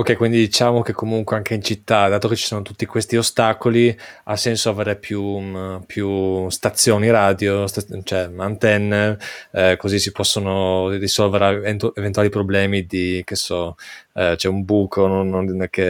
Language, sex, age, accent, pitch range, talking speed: Italian, male, 20-39, native, 95-110 Hz, 145 wpm